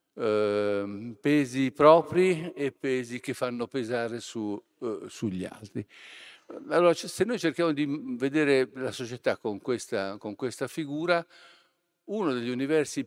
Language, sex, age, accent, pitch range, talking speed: Italian, male, 50-69, native, 105-150 Hz, 130 wpm